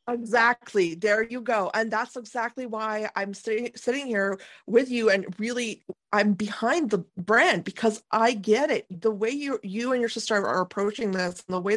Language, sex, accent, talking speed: English, female, American, 185 wpm